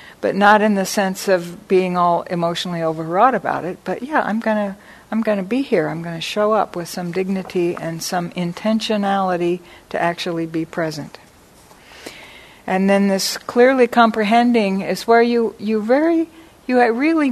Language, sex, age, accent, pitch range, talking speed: English, female, 60-79, American, 185-225 Hz, 170 wpm